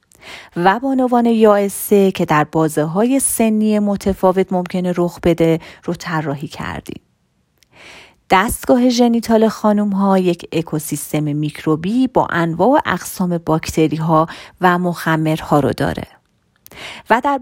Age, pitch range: 30-49, 165-220 Hz